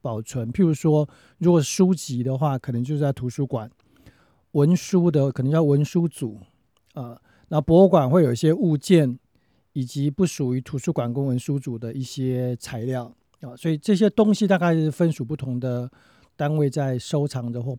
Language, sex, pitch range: Chinese, male, 125-165 Hz